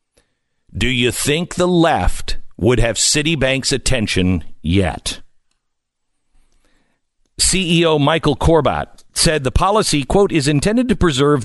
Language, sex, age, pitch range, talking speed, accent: English, male, 50-69, 115-170 Hz, 110 wpm, American